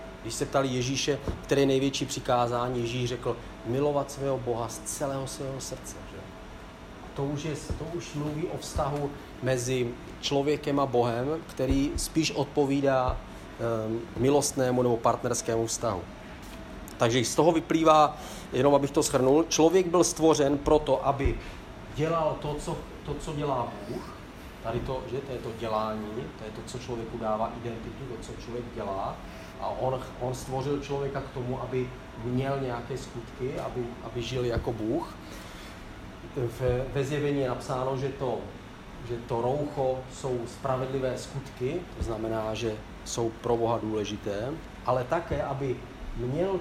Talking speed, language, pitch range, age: 150 wpm, Czech, 115-140 Hz, 40-59